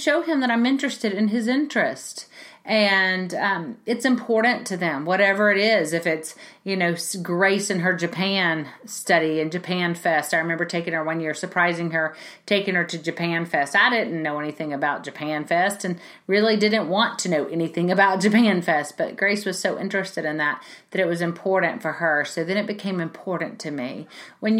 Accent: American